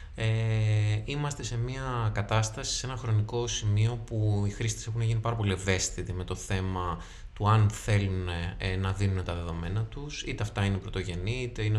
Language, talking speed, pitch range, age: Greek, 170 wpm, 95-115 Hz, 20-39